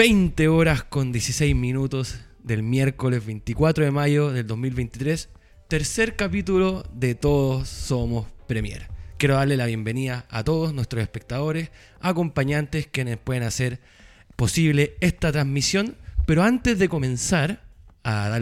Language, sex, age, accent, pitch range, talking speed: Spanish, male, 20-39, Argentinian, 120-165 Hz, 125 wpm